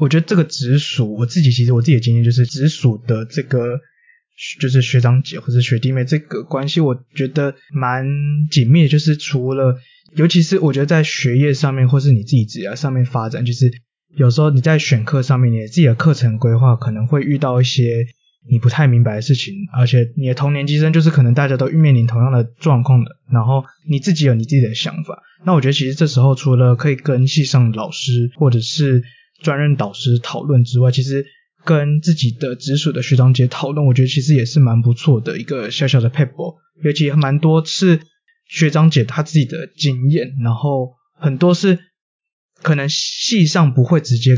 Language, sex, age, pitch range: Chinese, male, 20-39, 125-155 Hz